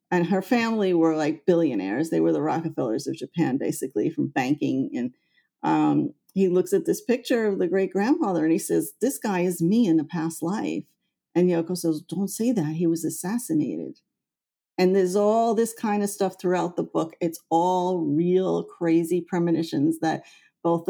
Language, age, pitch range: English, 50-69, 165-200 Hz